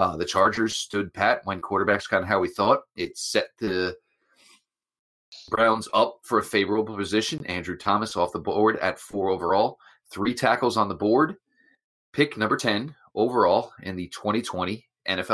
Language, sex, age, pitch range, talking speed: English, male, 30-49, 95-115 Hz, 160 wpm